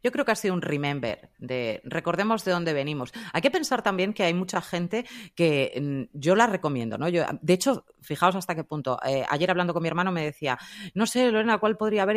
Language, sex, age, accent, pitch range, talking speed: Spanish, female, 30-49, Spanish, 155-210 Hz, 225 wpm